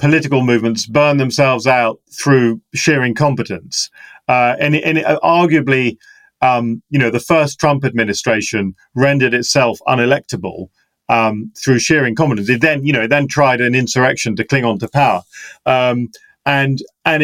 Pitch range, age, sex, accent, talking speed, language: 120-150 Hz, 40-59, male, British, 155 wpm, English